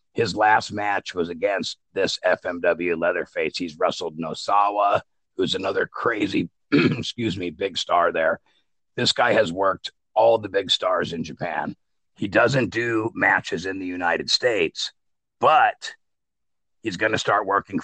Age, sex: 50-69, male